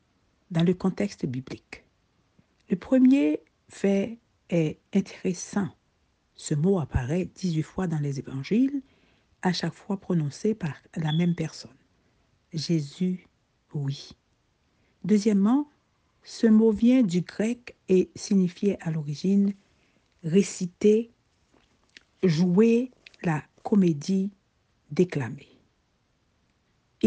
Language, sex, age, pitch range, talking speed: French, female, 60-79, 165-220 Hz, 105 wpm